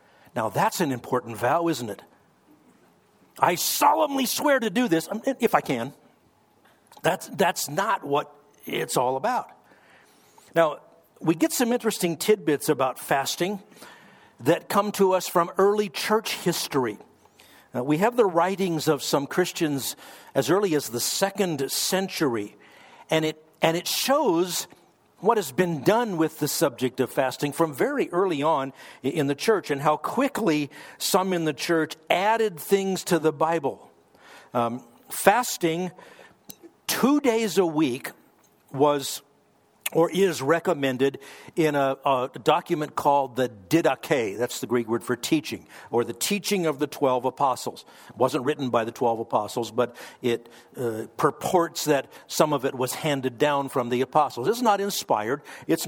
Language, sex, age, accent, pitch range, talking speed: English, male, 60-79, American, 135-195 Hz, 150 wpm